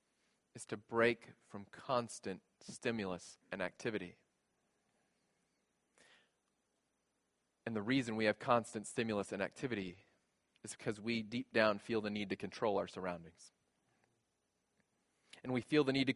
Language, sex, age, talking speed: English, male, 20-39, 130 wpm